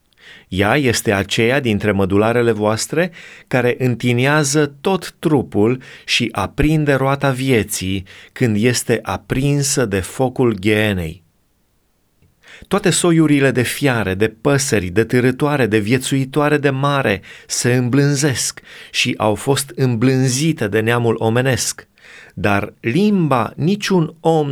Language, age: Romanian, 30-49